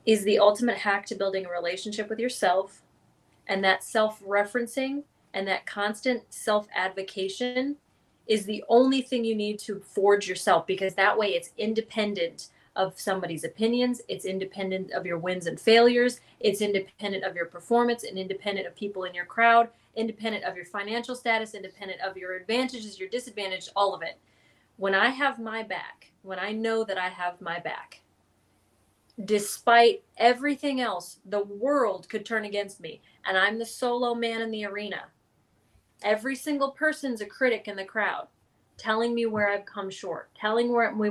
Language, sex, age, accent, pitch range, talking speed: English, female, 30-49, American, 190-230 Hz, 165 wpm